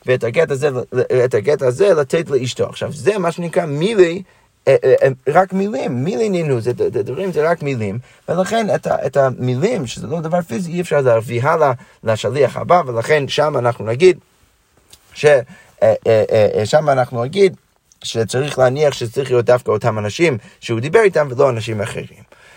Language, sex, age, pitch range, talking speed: Hebrew, male, 30-49, 125-175 Hz, 140 wpm